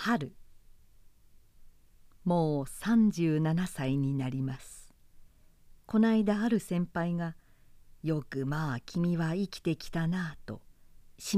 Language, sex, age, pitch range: Japanese, female, 50-69, 120-185 Hz